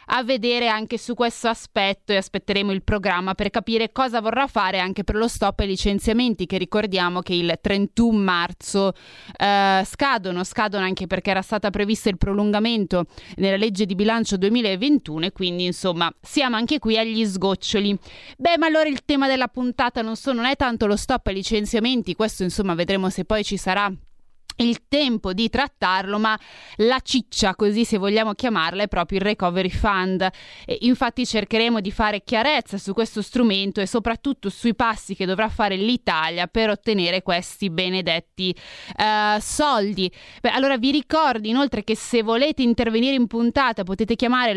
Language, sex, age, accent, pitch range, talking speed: Italian, female, 20-39, native, 195-240 Hz, 170 wpm